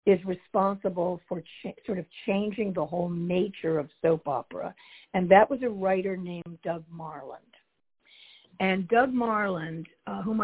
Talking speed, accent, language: 145 wpm, American, English